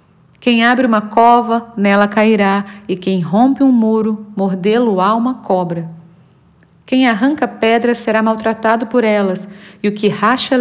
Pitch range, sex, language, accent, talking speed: 190-235 Hz, female, Portuguese, Brazilian, 145 wpm